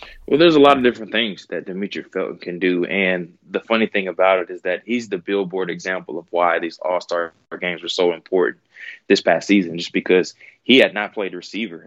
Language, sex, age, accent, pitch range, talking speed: English, male, 20-39, American, 90-100 Hz, 210 wpm